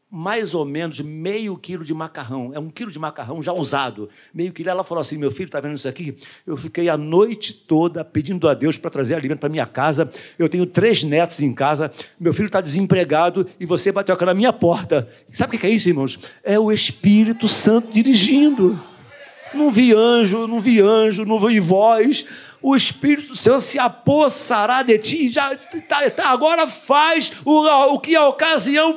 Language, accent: Portuguese, Brazilian